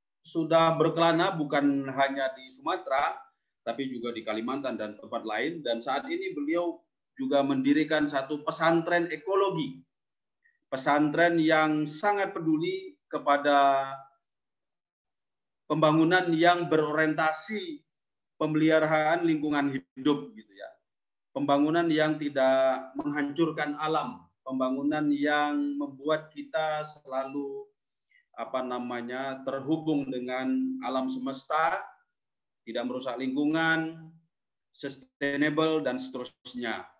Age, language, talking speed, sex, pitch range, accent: 30-49, Indonesian, 90 wpm, male, 130-160 Hz, native